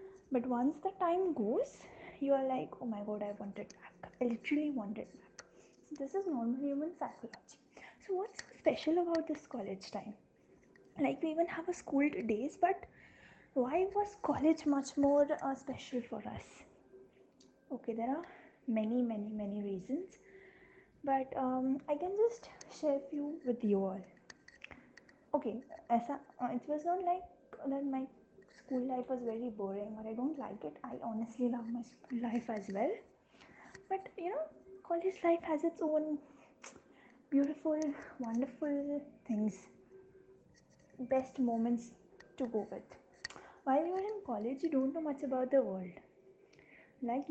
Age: 20-39